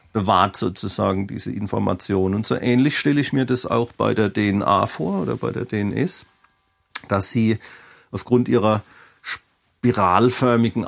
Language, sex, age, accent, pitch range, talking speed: German, male, 50-69, German, 100-130 Hz, 140 wpm